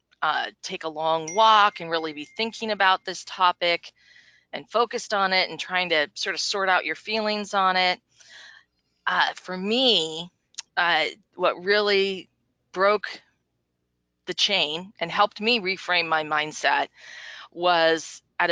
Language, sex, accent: English, female, American